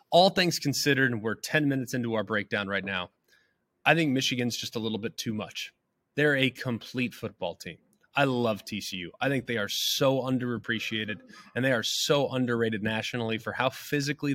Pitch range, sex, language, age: 115-140 Hz, male, English, 20-39